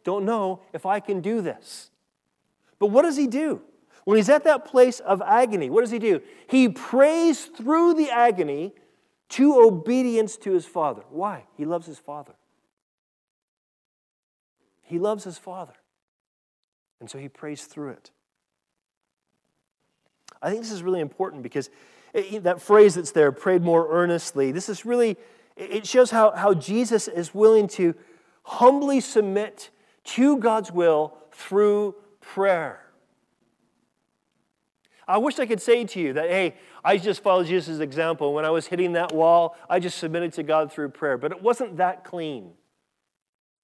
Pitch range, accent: 165-220 Hz, American